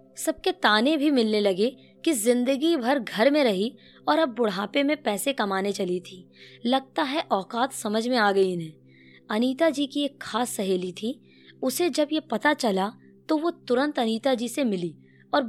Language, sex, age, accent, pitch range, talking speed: Hindi, female, 20-39, native, 195-275 Hz, 180 wpm